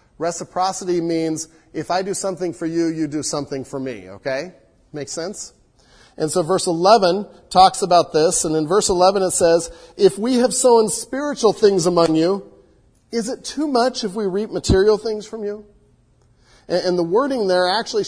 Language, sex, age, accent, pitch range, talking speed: English, male, 40-59, American, 140-205 Hz, 175 wpm